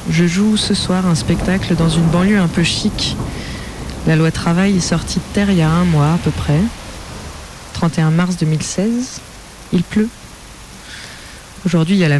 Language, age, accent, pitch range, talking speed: French, 20-39, French, 155-180 Hz, 180 wpm